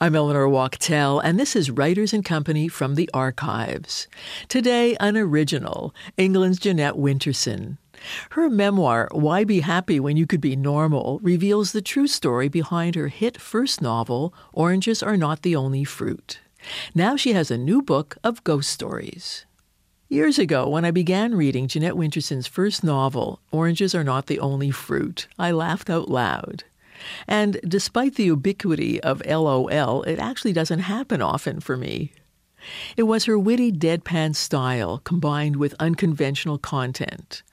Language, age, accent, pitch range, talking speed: English, 60-79, American, 145-190 Hz, 150 wpm